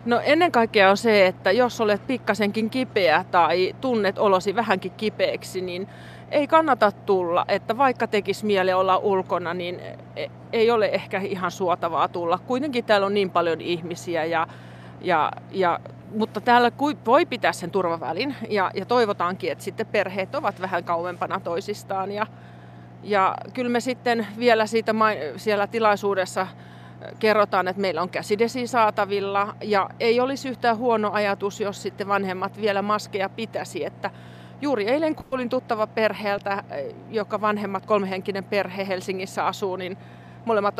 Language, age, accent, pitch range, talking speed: Finnish, 30-49, native, 185-220 Hz, 145 wpm